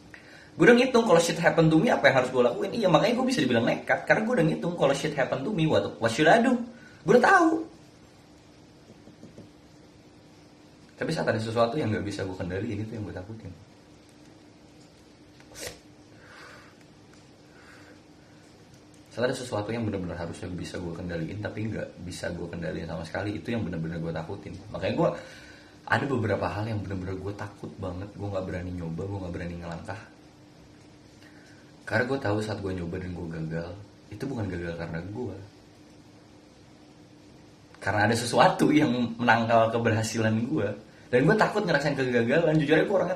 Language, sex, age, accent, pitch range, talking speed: Indonesian, male, 20-39, native, 95-125 Hz, 165 wpm